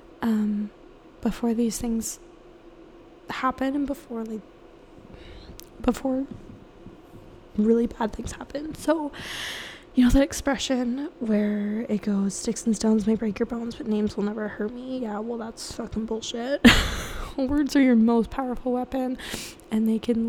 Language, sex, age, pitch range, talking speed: English, female, 10-29, 230-265 Hz, 140 wpm